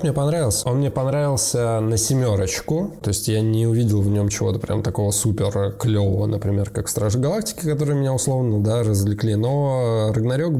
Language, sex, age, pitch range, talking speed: Russian, male, 20-39, 105-140 Hz, 170 wpm